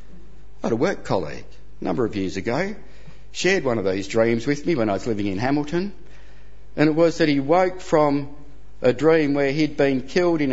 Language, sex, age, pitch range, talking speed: English, male, 60-79, 110-150 Hz, 210 wpm